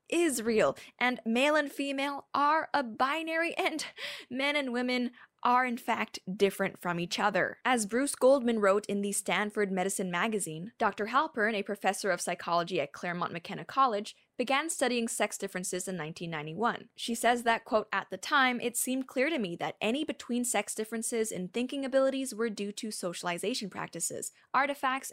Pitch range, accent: 200-265 Hz, American